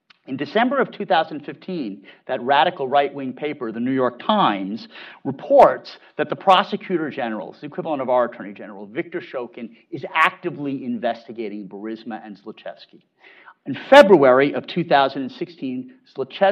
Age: 50-69